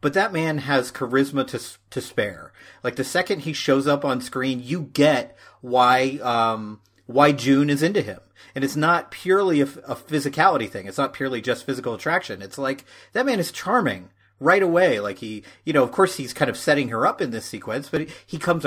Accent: American